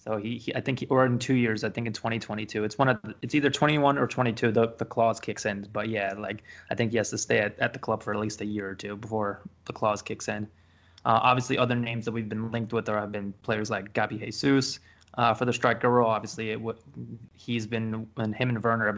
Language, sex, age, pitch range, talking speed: English, male, 20-39, 110-120 Hz, 255 wpm